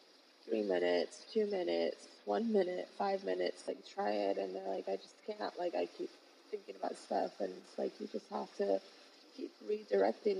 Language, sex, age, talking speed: English, female, 20-39, 185 wpm